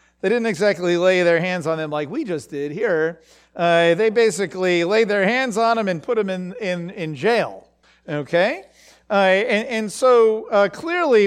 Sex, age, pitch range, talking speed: male, 50-69, 170-230 Hz, 185 wpm